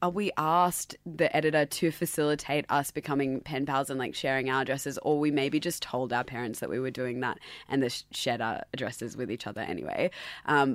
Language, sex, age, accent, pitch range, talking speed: English, female, 20-39, Australian, 140-170 Hz, 205 wpm